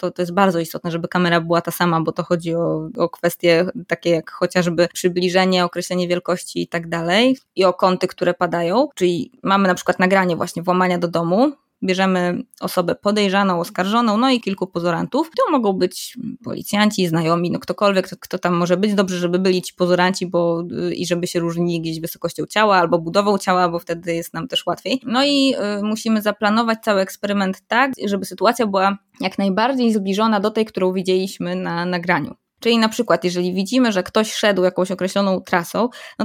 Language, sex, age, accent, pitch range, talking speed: Polish, female, 20-39, native, 180-210 Hz, 185 wpm